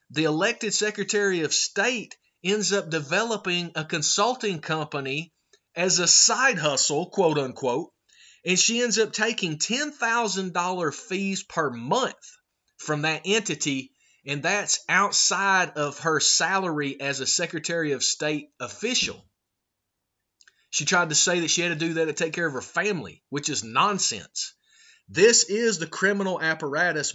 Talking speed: 140 wpm